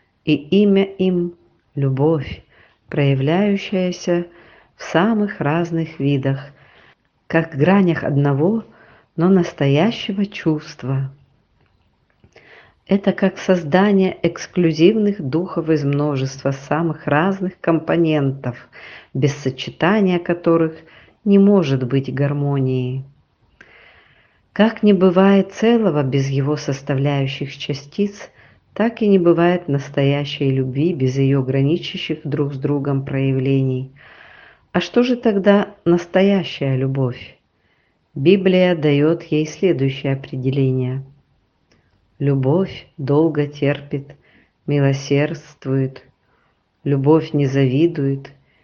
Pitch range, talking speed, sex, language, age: 140-180 Hz, 90 wpm, female, Russian, 50-69